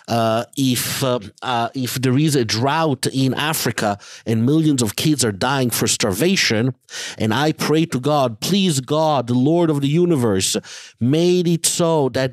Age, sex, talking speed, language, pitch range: 50-69, male, 170 wpm, English, 120-165 Hz